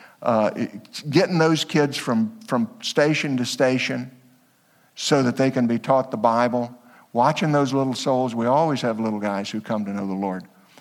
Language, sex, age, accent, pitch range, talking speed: English, male, 60-79, American, 115-165 Hz, 180 wpm